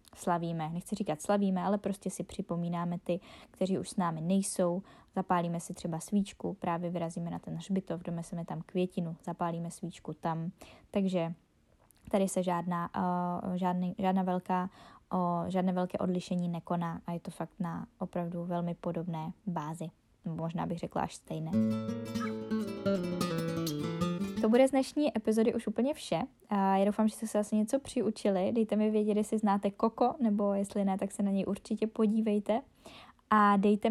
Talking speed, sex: 150 wpm, female